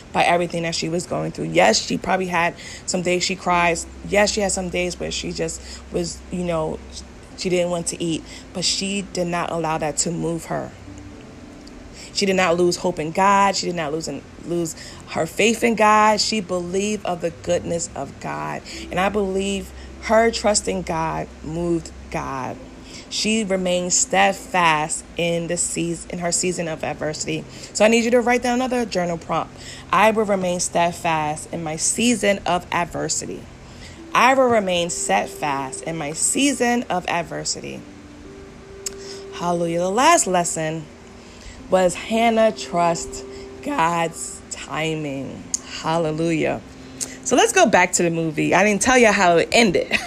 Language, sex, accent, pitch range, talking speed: English, female, American, 160-195 Hz, 165 wpm